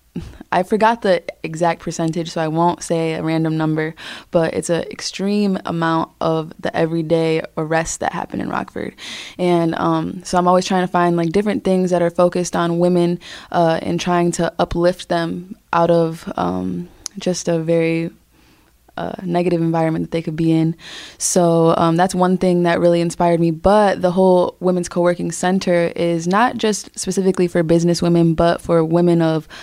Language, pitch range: English, 165-180 Hz